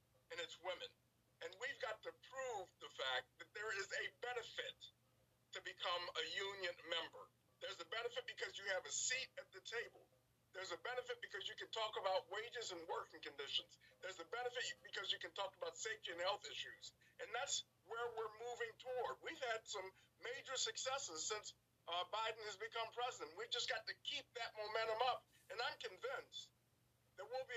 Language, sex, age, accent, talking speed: English, male, 50-69, American, 185 wpm